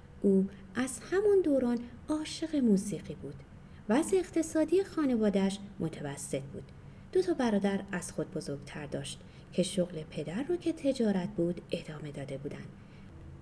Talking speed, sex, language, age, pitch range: 135 wpm, female, Persian, 30-49, 170-265 Hz